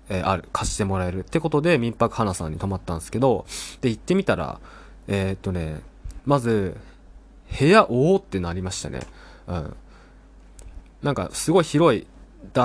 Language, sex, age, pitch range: Japanese, male, 20-39, 95-140 Hz